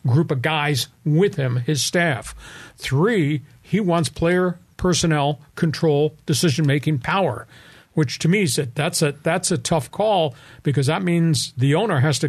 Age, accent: 50-69, American